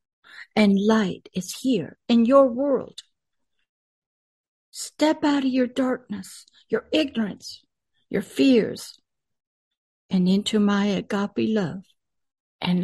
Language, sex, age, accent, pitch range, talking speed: English, female, 60-79, American, 200-260 Hz, 105 wpm